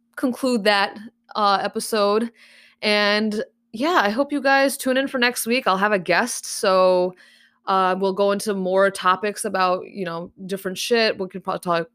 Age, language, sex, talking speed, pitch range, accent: 20-39, English, female, 175 wpm, 180-235 Hz, American